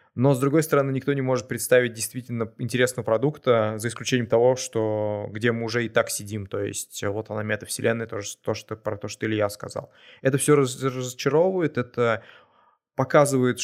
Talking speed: 170 wpm